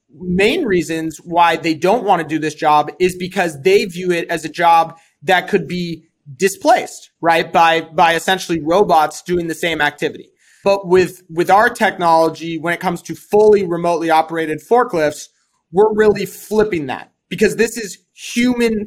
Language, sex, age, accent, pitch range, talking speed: English, male, 30-49, American, 165-195 Hz, 165 wpm